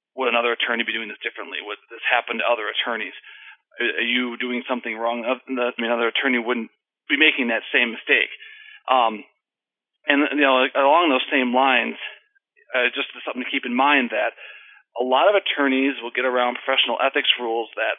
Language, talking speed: English, 185 wpm